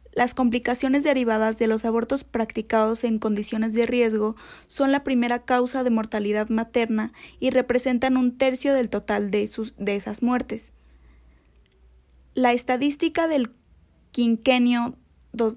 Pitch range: 210-250 Hz